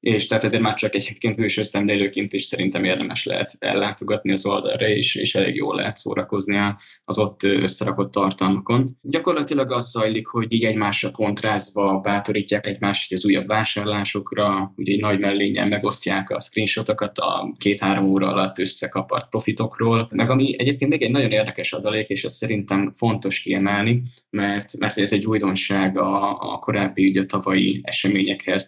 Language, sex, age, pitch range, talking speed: Hungarian, male, 10-29, 100-110 Hz, 150 wpm